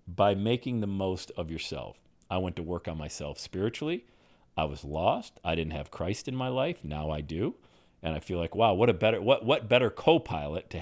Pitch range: 95-155 Hz